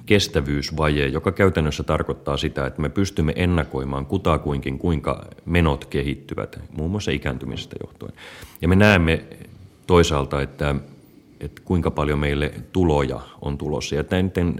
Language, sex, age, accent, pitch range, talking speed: Finnish, male, 30-49, native, 70-90 Hz, 125 wpm